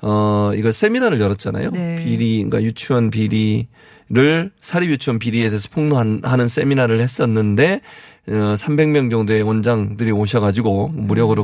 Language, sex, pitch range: Korean, male, 110-145 Hz